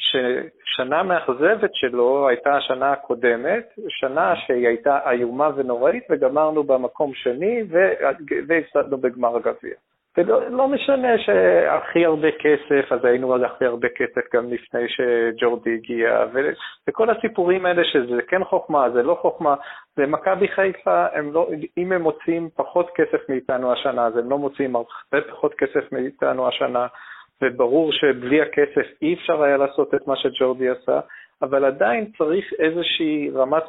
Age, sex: 40-59, male